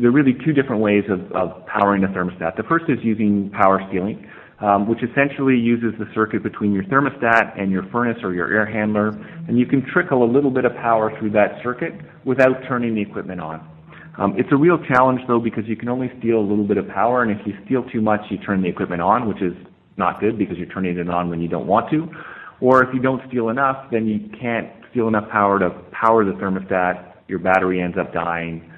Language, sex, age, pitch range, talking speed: English, male, 30-49, 90-115 Hz, 230 wpm